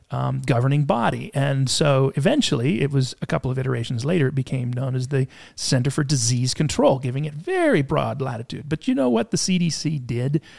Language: English